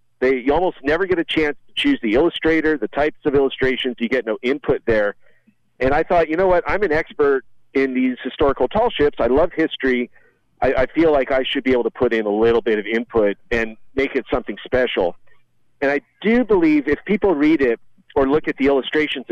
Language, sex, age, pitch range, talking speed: English, male, 50-69, 120-155 Hz, 220 wpm